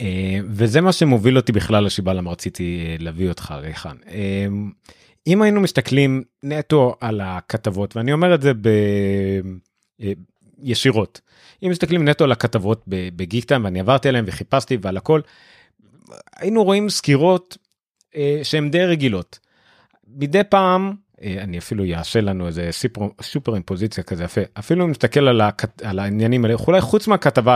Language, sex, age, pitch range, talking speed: Hebrew, male, 30-49, 100-150 Hz, 135 wpm